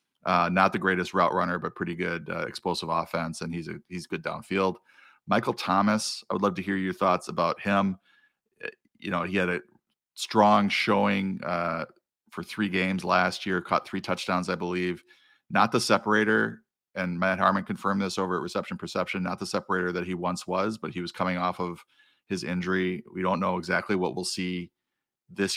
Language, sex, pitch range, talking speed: English, male, 90-100 Hz, 190 wpm